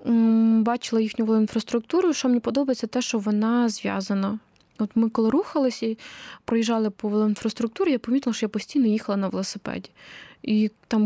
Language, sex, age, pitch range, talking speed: Ukrainian, female, 20-39, 210-240 Hz, 150 wpm